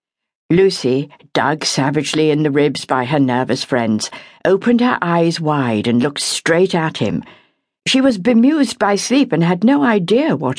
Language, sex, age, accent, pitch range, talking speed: English, female, 60-79, British, 145-240 Hz, 165 wpm